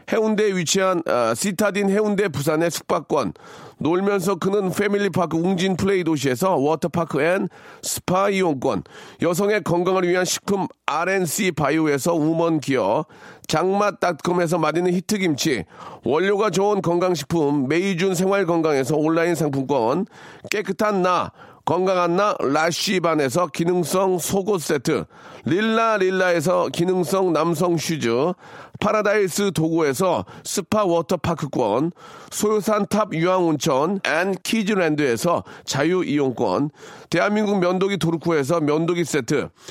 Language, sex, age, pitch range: Korean, male, 40-59, 165-200 Hz